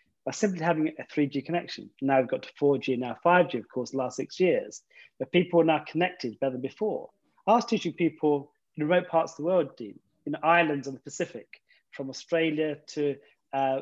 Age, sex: 40-59, male